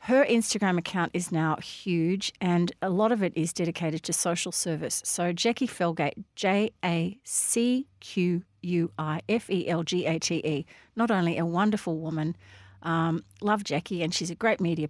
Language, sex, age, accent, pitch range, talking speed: English, female, 40-59, Australian, 165-200 Hz, 135 wpm